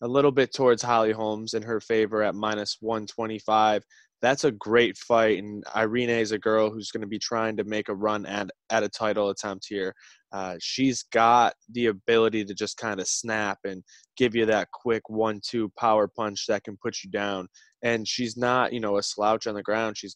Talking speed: 210 wpm